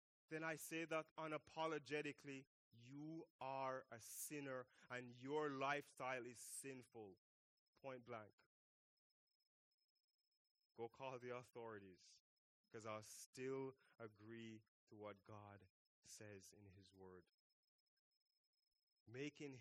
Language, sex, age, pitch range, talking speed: English, male, 20-39, 120-160 Hz, 100 wpm